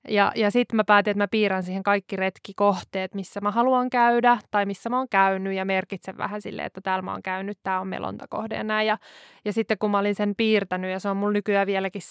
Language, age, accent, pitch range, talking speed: Finnish, 20-39, native, 195-220 Hz, 240 wpm